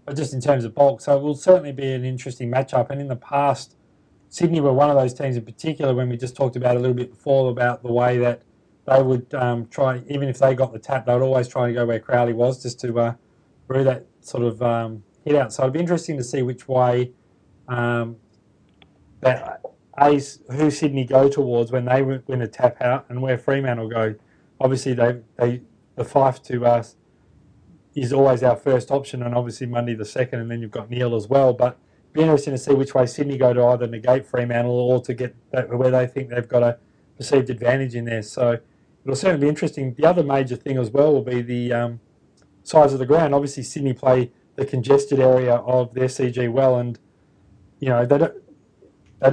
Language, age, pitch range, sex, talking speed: English, 20-39, 120-135 Hz, male, 220 wpm